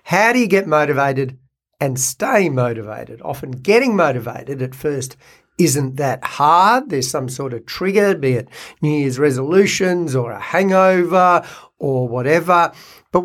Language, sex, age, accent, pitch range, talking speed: English, male, 60-79, Australian, 130-170 Hz, 145 wpm